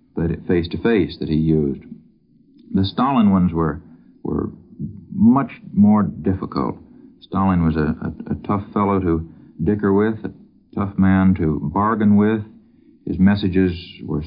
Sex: male